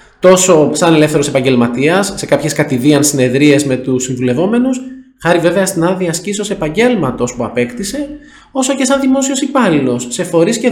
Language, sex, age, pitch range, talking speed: Greek, male, 20-39, 150-215 Hz, 150 wpm